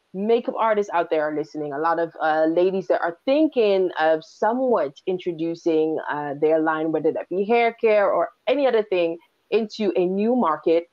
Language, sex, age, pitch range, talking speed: English, female, 20-39, 165-210 Hz, 180 wpm